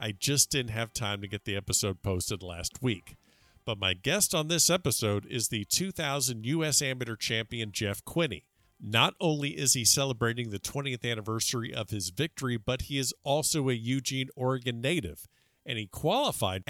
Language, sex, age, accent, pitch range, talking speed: English, male, 50-69, American, 105-140 Hz, 175 wpm